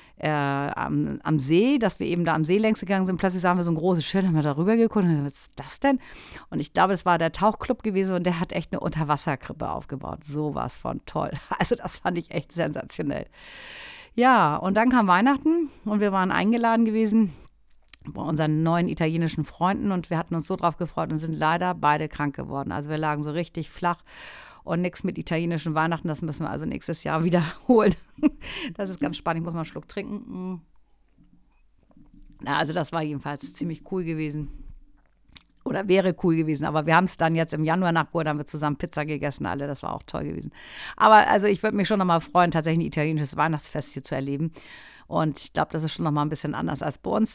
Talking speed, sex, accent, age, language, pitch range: 220 wpm, female, German, 50-69, German, 155-190 Hz